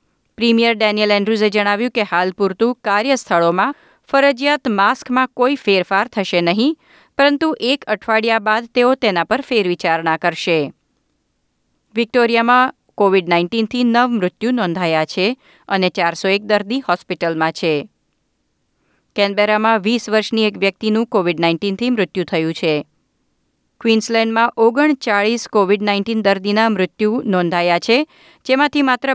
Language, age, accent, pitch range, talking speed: Gujarati, 30-49, native, 185-240 Hz, 115 wpm